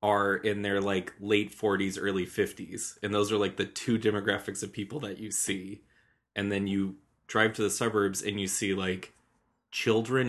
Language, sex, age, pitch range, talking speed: English, male, 20-39, 100-115 Hz, 185 wpm